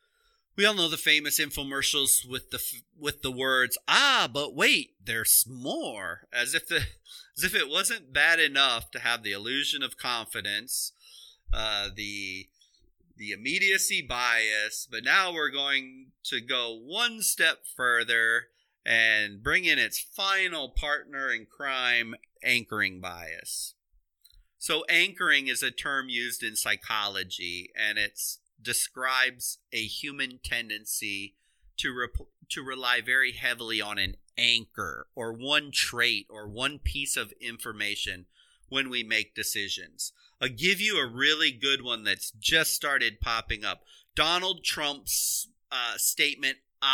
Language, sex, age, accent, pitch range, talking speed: English, male, 30-49, American, 105-150 Hz, 135 wpm